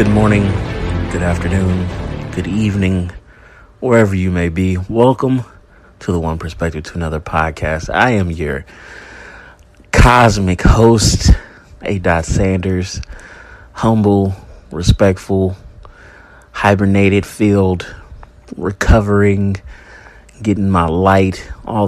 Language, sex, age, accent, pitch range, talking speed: English, male, 30-49, American, 90-105 Hz, 95 wpm